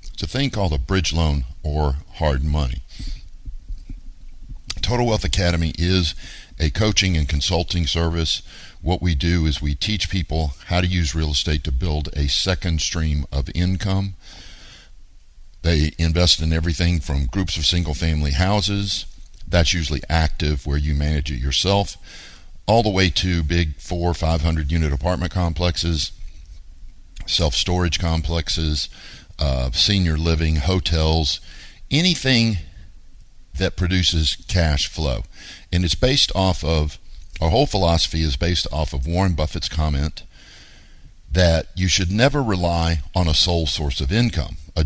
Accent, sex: American, male